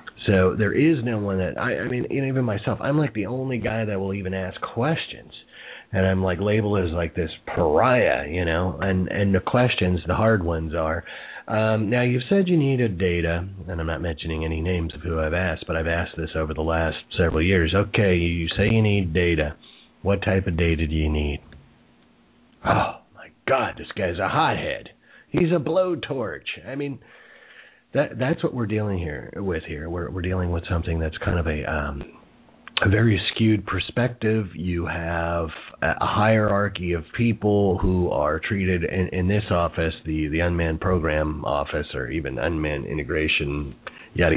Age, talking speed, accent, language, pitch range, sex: 30-49, 185 wpm, American, English, 85-110 Hz, male